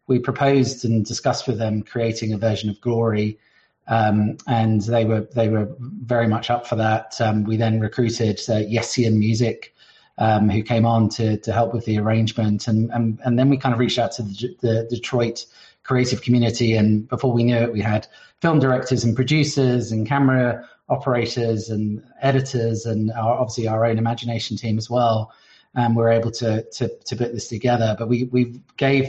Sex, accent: male, British